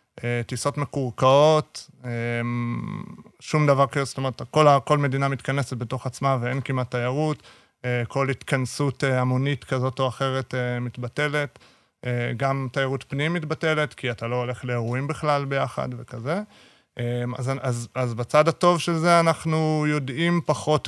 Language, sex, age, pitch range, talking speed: Hebrew, male, 30-49, 120-145 Hz, 125 wpm